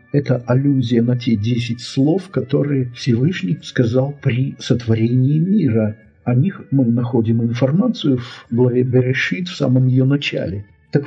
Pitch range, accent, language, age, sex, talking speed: 115-140 Hz, native, Russian, 50-69, male, 135 wpm